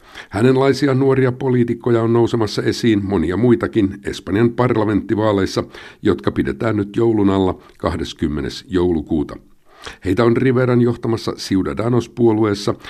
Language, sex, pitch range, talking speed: Finnish, male, 95-120 Hz, 100 wpm